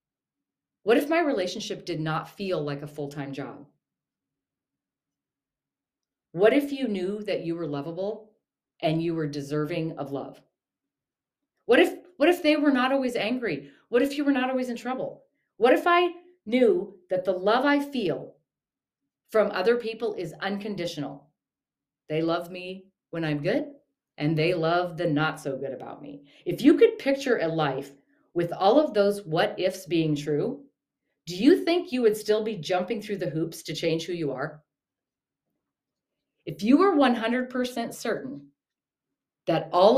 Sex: female